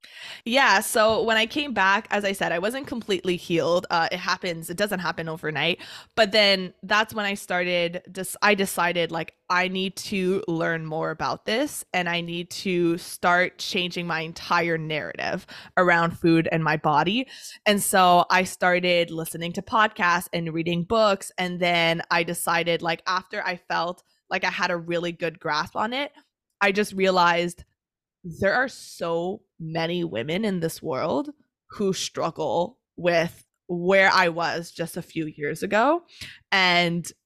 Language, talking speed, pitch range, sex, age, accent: English, 165 wpm, 170-200 Hz, female, 20-39, American